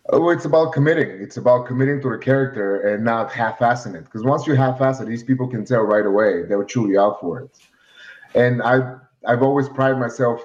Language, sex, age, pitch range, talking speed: English, male, 30-49, 110-130 Hz, 205 wpm